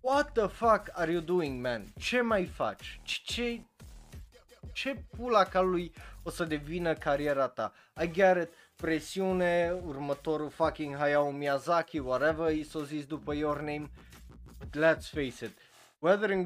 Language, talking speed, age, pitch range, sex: Romanian, 145 wpm, 20-39, 135-185 Hz, male